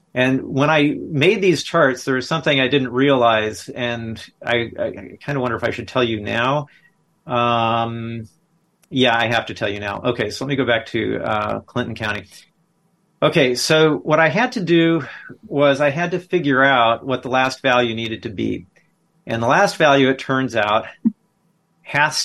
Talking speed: 190 wpm